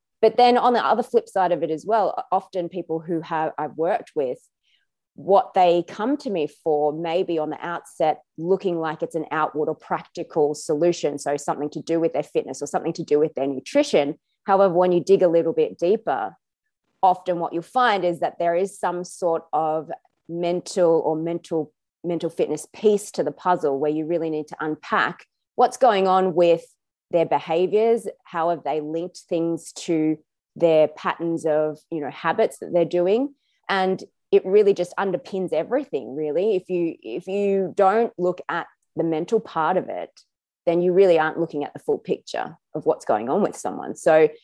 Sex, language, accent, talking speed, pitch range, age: female, English, Australian, 190 wpm, 155-190 Hz, 20-39